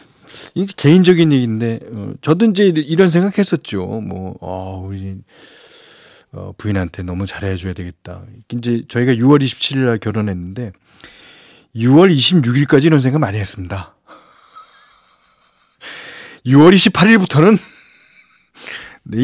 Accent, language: native, Korean